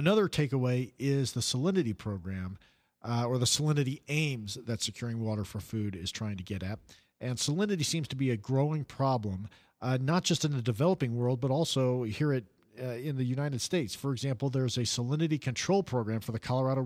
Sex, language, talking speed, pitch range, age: male, English, 190 wpm, 110-140 Hz, 50-69